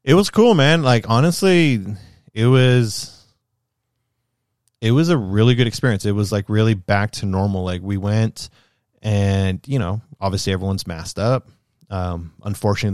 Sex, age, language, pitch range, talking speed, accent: male, 20-39, English, 95-115 Hz, 155 wpm, American